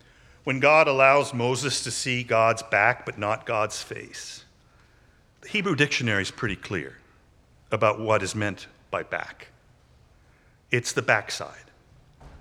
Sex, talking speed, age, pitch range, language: male, 130 wpm, 50-69, 115-155 Hz, English